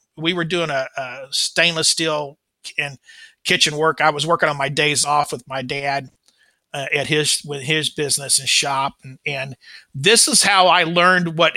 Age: 50-69